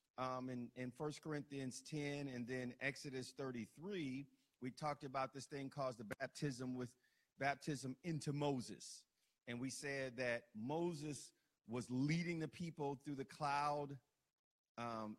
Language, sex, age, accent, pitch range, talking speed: English, male, 50-69, American, 125-150 Hz, 140 wpm